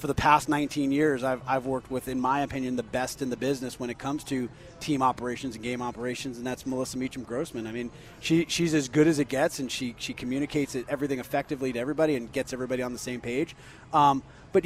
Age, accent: 30-49, American